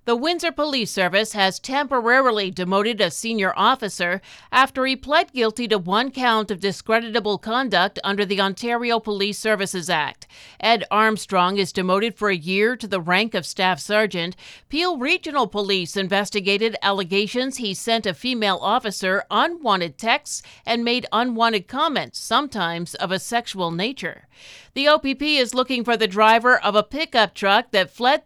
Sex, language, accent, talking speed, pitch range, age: female, English, American, 155 wpm, 190-235 Hz, 50-69